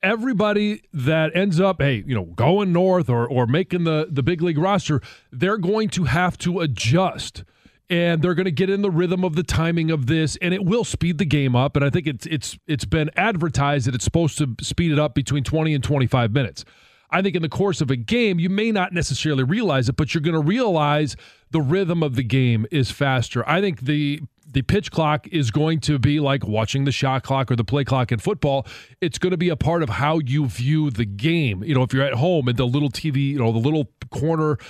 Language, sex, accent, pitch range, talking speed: English, male, American, 130-175 Hz, 240 wpm